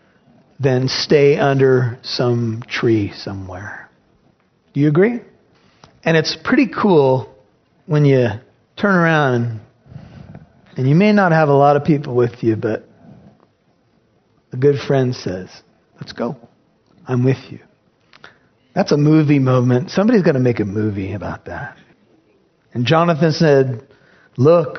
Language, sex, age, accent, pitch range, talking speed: English, male, 40-59, American, 130-185 Hz, 130 wpm